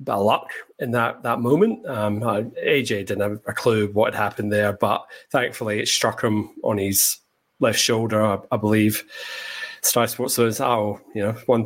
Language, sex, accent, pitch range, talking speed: English, male, British, 105-115 Hz, 180 wpm